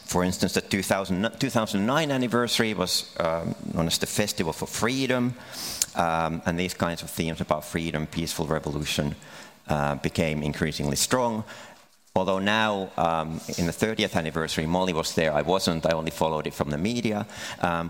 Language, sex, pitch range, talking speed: Finnish, male, 80-100 Hz, 160 wpm